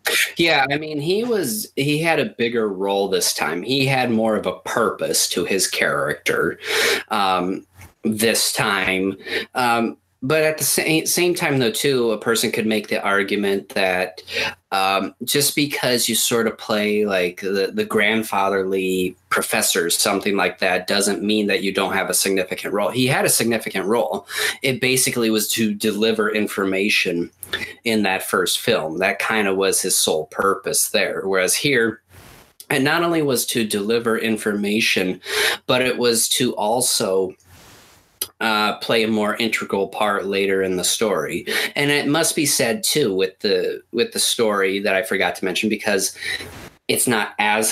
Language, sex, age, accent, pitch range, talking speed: English, male, 20-39, American, 95-115 Hz, 165 wpm